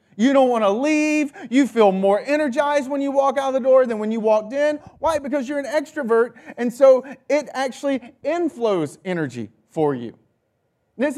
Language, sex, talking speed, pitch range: English, male, 190 wpm, 165-245 Hz